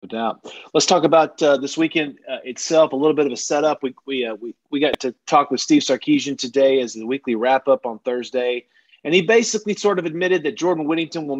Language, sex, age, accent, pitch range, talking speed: English, male, 30-49, American, 130-165 Hz, 230 wpm